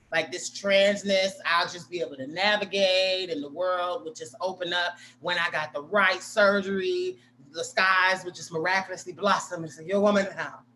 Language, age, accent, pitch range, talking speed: English, 30-49, American, 165-220 Hz, 185 wpm